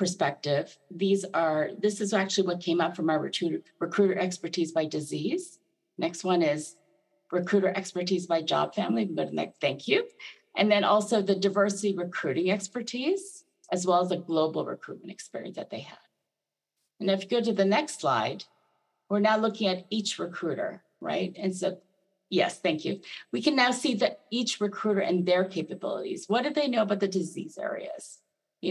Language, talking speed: English, 175 wpm